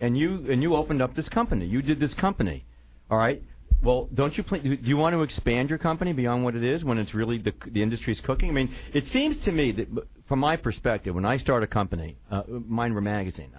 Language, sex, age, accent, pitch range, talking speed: English, male, 50-69, American, 95-135 Hz, 245 wpm